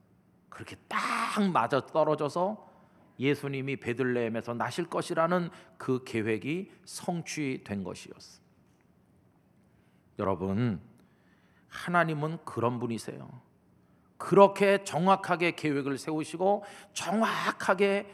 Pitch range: 125-185 Hz